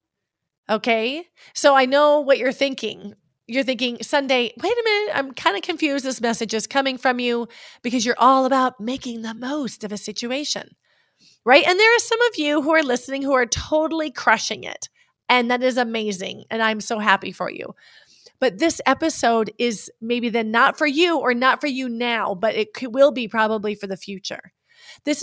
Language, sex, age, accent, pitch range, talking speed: English, female, 30-49, American, 215-275 Hz, 195 wpm